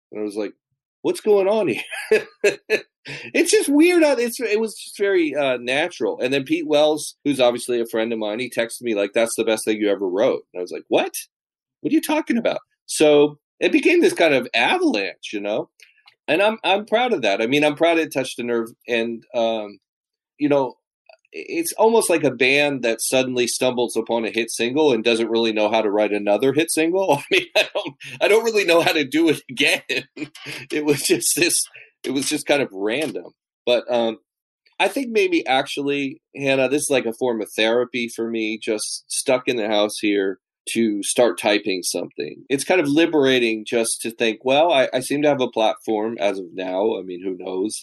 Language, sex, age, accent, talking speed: English, male, 30-49, American, 210 wpm